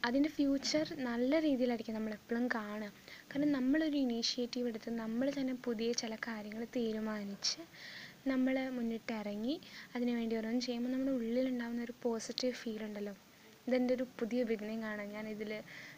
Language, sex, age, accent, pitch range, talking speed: Malayalam, female, 20-39, native, 225-260 Hz, 130 wpm